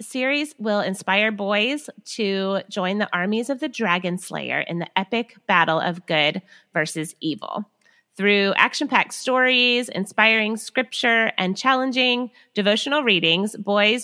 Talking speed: 135 wpm